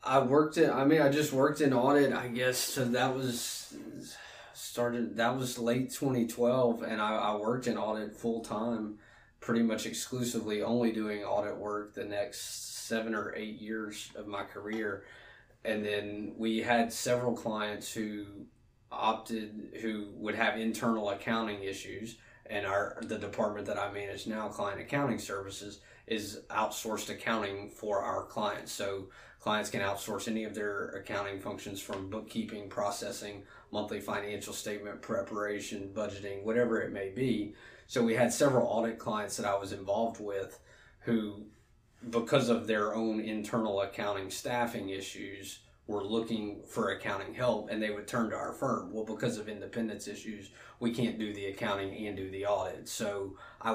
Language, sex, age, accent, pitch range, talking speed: English, male, 20-39, American, 105-120 Hz, 160 wpm